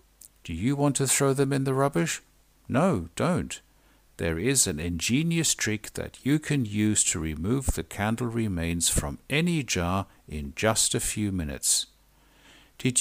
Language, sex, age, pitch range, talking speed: English, male, 60-79, 85-125 Hz, 155 wpm